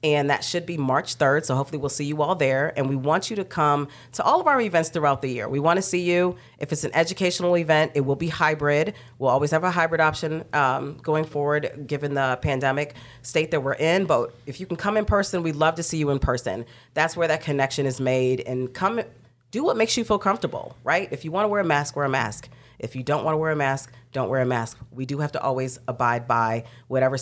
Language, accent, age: English, American, 40-59